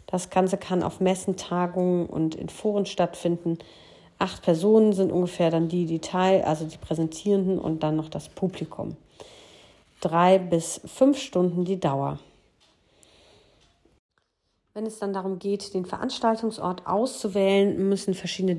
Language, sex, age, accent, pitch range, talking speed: German, female, 40-59, German, 170-200 Hz, 135 wpm